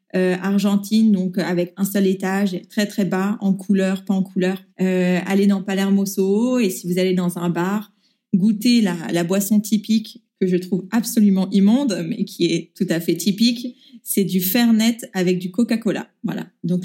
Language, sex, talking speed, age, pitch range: French, female, 185 wpm, 20-39, 190-225 Hz